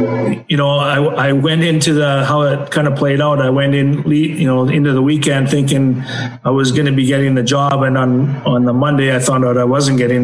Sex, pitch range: male, 130-145 Hz